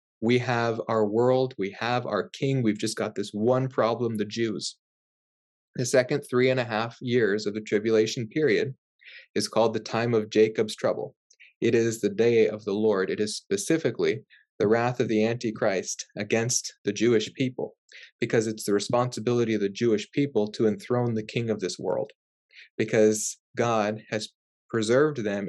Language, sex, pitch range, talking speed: English, male, 105-125 Hz, 170 wpm